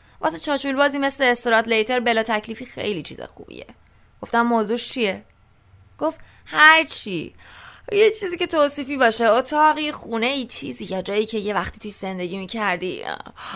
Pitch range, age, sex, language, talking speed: 190-275 Hz, 20-39, female, English, 145 wpm